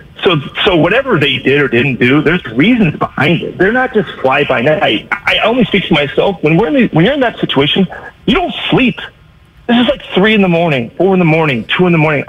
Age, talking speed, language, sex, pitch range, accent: 40-59, 250 wpm, English, male, 135-185 Hz, American